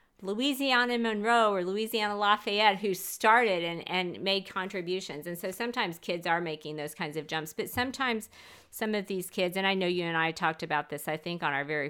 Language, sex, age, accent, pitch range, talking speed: English, female, 50-69, American, 165-200 Hz, 205 wpm